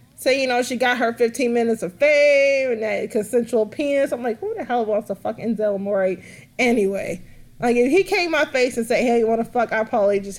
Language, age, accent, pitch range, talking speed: English, 30-49, American, 200-275 Hz, 235 wpm